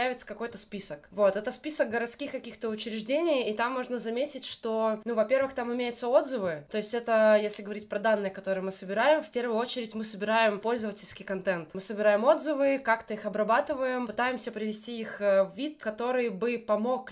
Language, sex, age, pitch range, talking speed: Russian, female, 20-39, 210-250 Hz, 170 wpm